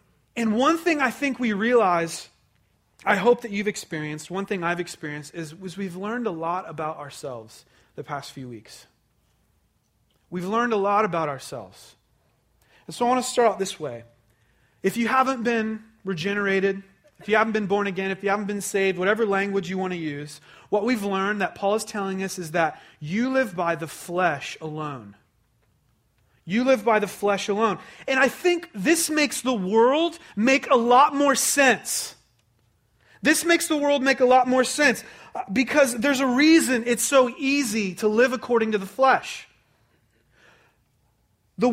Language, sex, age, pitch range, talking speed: English, male, 30-49, 170-250 Hz, 175 wpm